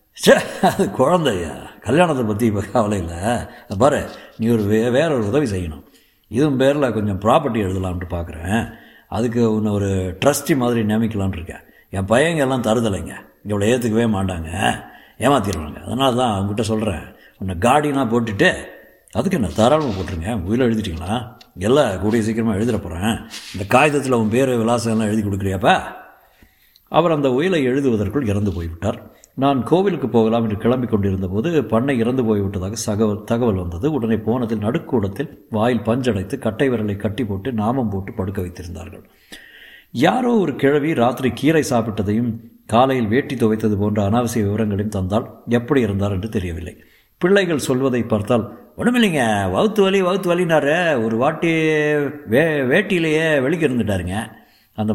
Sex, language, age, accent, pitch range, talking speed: male, Tamil, 60-79, native, 100-130 Hz, 130 wpm